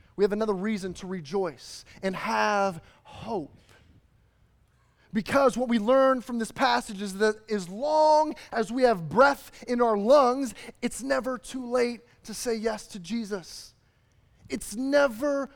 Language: English